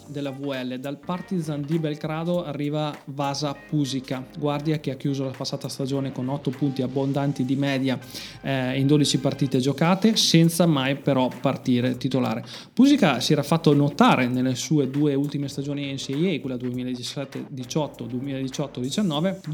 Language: Italian